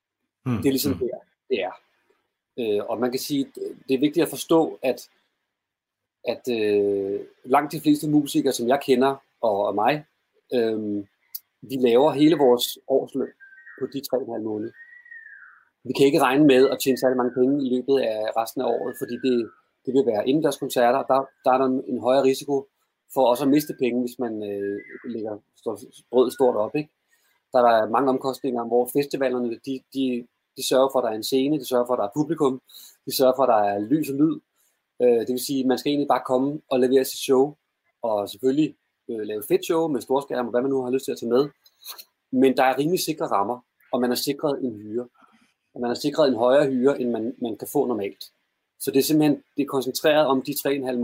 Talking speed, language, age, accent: 225 wpm, Danish, 30-49, native